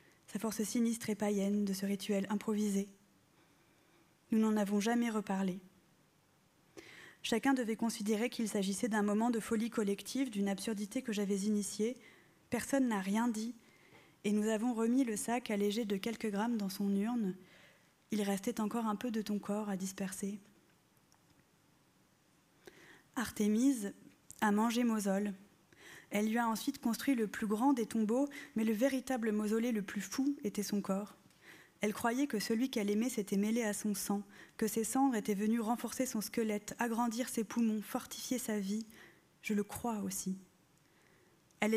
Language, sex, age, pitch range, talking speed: French, female, 20-39, 200-235 Hz, 160 wpm